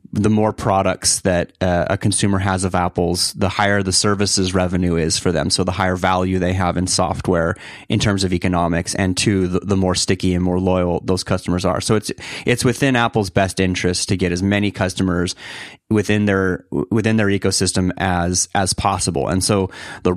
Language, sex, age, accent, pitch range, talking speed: English, male, 30-49, American, 90-105 Hz, 195 wpm